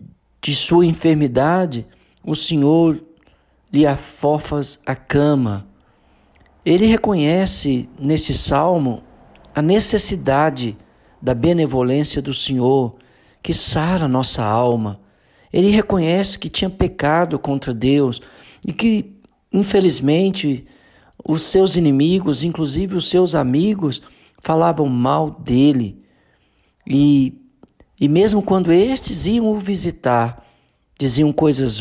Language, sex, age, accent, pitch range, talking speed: Portuguese, male, 50-69, Brazilian, 125-170 Hz, 100 wpm